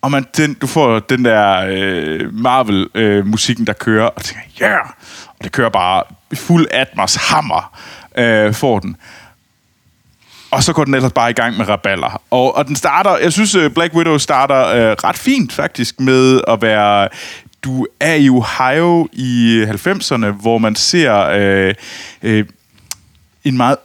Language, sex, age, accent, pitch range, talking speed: Danish, male, 20-39, native, 105-140 Hz, 165 wpm